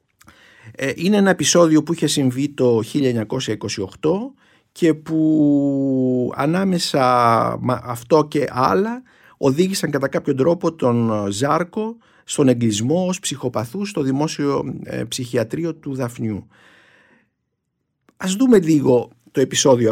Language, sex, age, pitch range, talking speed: Greek, male, 50-69, 125-175 Hz, 100 wpm